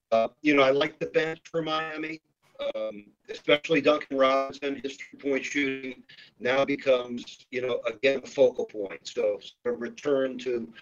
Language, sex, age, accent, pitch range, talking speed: English, male, 50-69, American, 120-155 Hz, 165 wpm